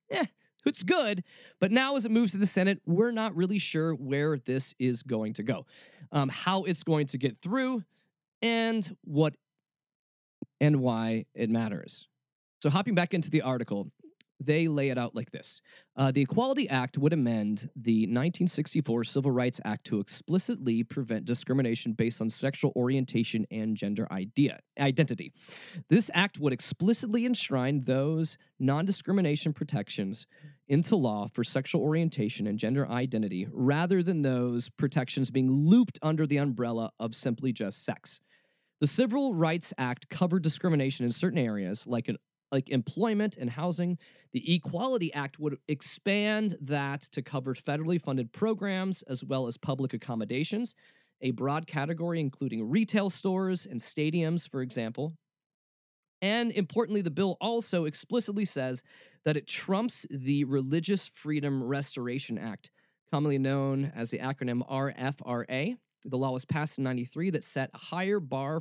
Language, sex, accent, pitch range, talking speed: English, male, American, 130-175 Hz, 150 wpm